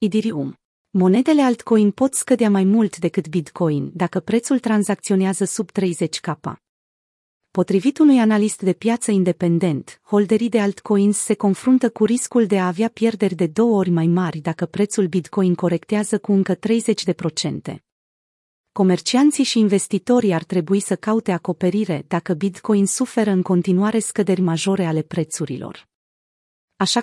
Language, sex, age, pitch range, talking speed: Romanian, female, 30-49, 180-220 Hz, 135 wpm